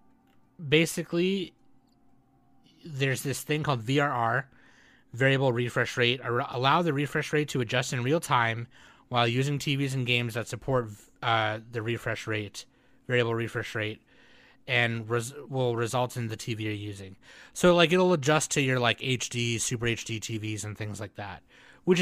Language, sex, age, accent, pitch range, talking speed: English, male, 30-49, American, 115-140 Hz, 160 wpm